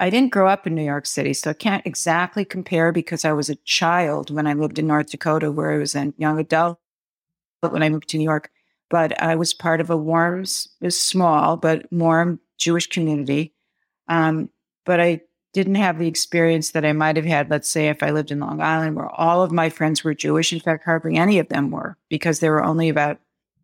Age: 50-69